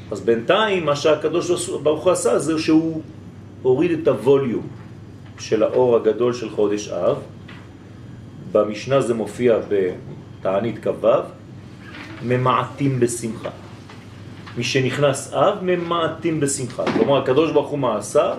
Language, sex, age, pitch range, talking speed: French, male, 40-59, 115-150 Hz, 115 wpm